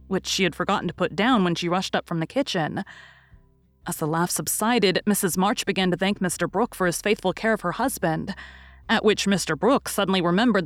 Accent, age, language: American, 30-49, English